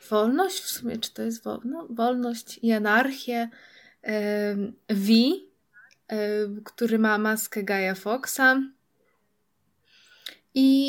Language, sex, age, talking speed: Polish, female, 20-39, 100 wpm